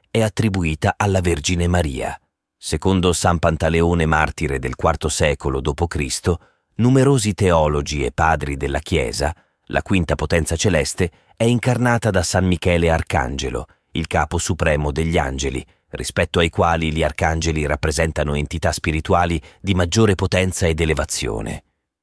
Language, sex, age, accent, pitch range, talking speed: Italian, male, 30-49, native, 80-95 Hz, 130 wpm